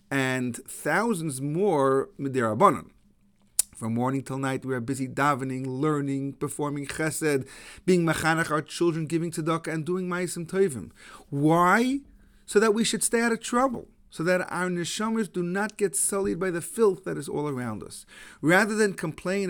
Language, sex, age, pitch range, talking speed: English, male, 40-59, 135-195 Hz, 165 wpm